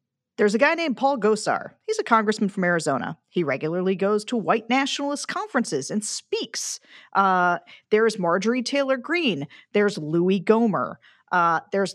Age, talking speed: 40-59, 155 wpm